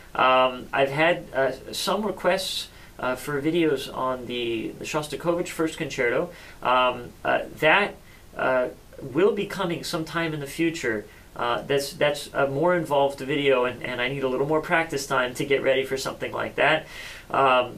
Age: 40-59